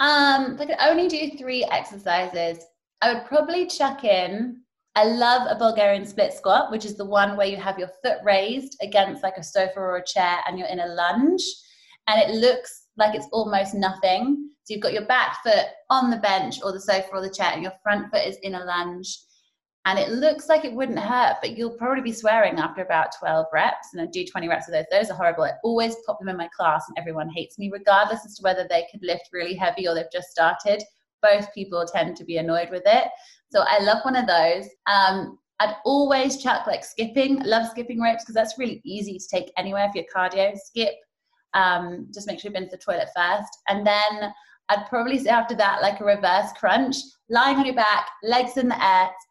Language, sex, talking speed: English, female, 225 wpm